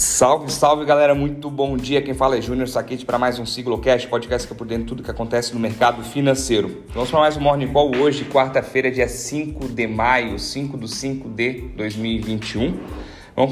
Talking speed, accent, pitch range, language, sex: 205 wpm, Brazilian, 115-135 Hz, Portuguese, male